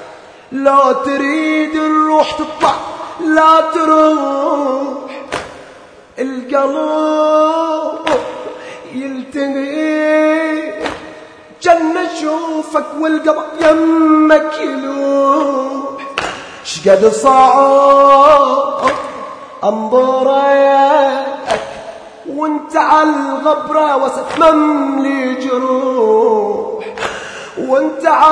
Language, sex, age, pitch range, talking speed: Arabic, male, 20-39, 220-310 Hz, 45 wpm